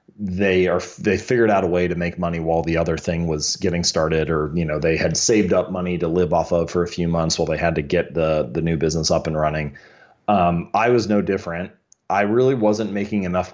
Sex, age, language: male, 30-49, English